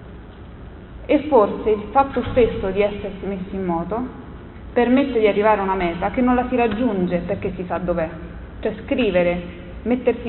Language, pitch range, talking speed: Italian, 180-230 Hz, 165 wpm